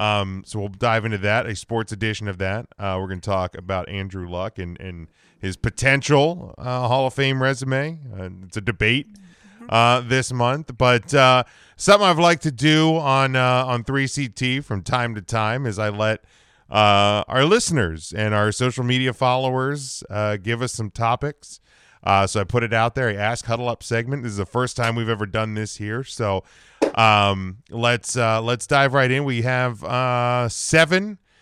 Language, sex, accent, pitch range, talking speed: English, male, American, 105-140 Hz, 190 wpm